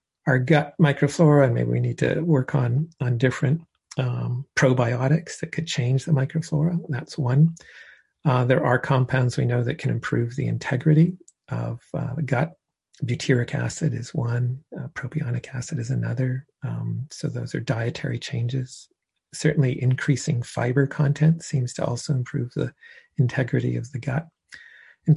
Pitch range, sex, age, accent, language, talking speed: 125-150 Hz, male, 40-59, American, English, 155 wpm